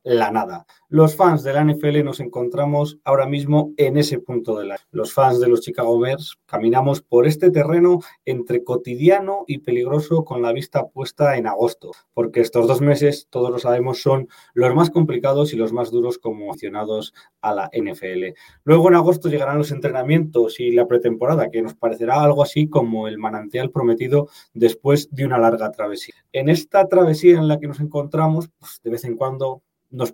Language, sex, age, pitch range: Spanish, male, 20-39, 120-155 Hz